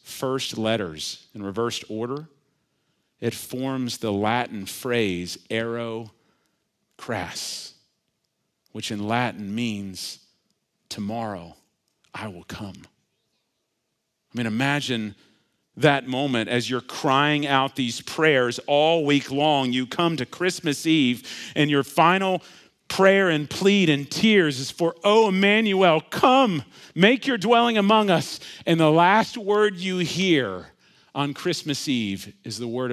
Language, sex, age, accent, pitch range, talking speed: English, male, 40-59, American, 110-160 Hz, 125 wpm